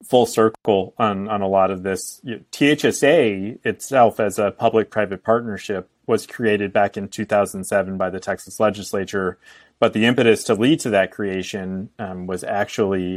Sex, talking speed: male, 155 wpm